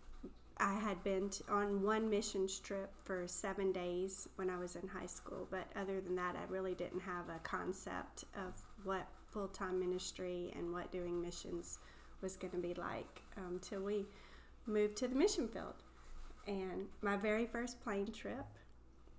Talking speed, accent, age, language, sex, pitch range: 165 wpm, American, 30-49, English, female, 180-210 Hz